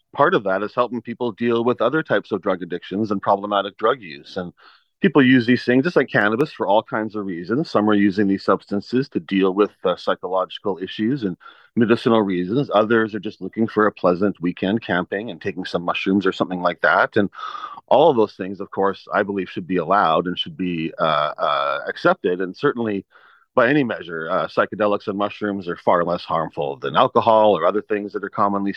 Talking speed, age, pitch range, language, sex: 210 wpm, 40-59, 100-120 Hz, English, male